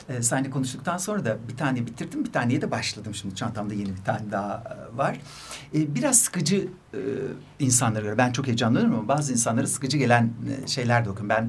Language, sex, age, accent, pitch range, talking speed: Turkish, male, 60-79, native, 115-145 Hz, 200 wpm